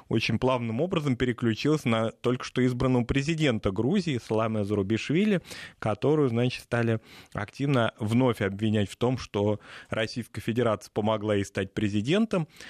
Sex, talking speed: male, 130 wpm